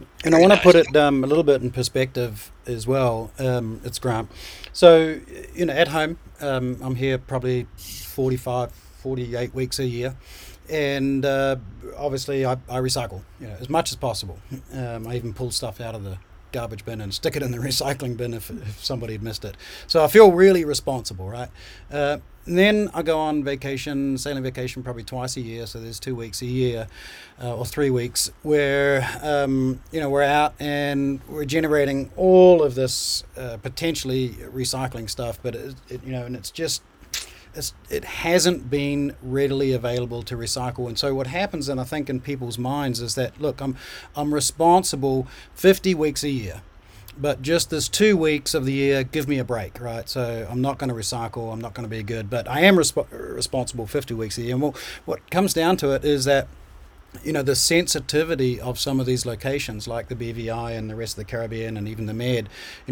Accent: Australian